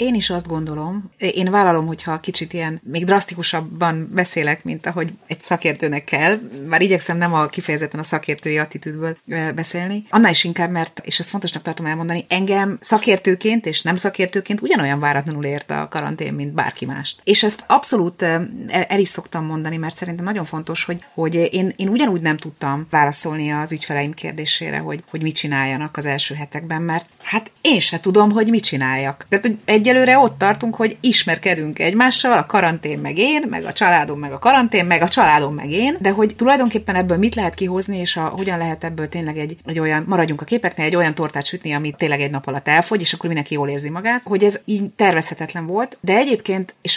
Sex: female